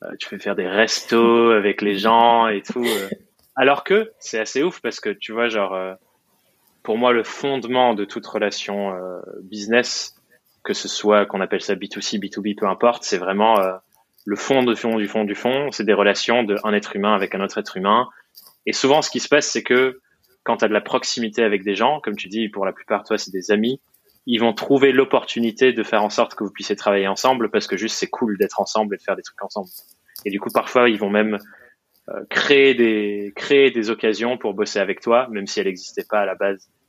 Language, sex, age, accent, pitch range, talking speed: French, male, 20-39, French, 100-120 Hz, 235 wpm